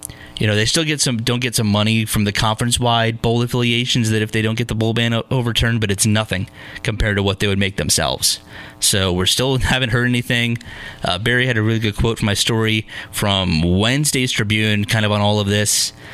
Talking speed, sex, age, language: 225 wpm, male, 30-49, English